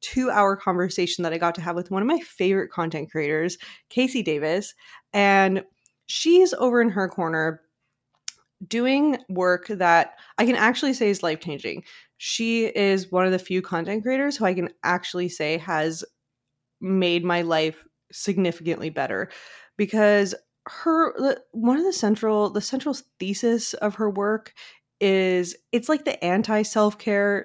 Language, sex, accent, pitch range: English, female, American, 170-215 Hz